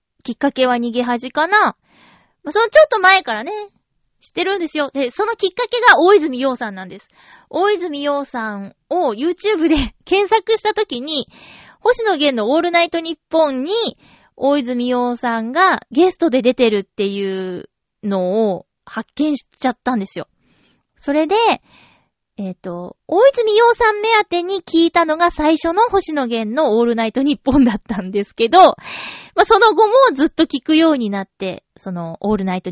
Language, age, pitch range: Japanese, 20-39, 225-350 Hz